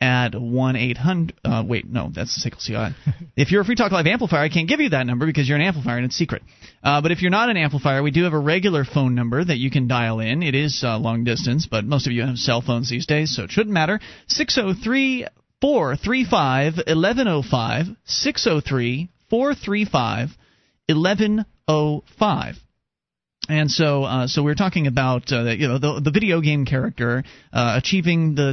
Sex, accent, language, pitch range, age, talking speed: male, American, English, 135-195 Hz, 30-49, 180 wpm